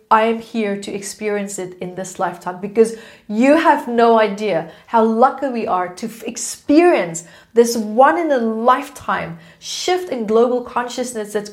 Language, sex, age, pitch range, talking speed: English, female, 30-49, 205-280 Hz, 155 wpm